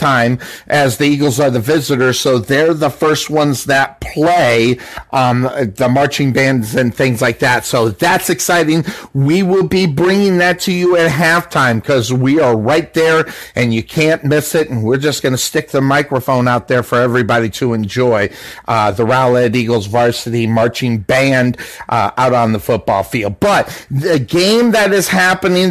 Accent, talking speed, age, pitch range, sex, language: American, 175 wpm, 50-69, 135-175 Hz, male, English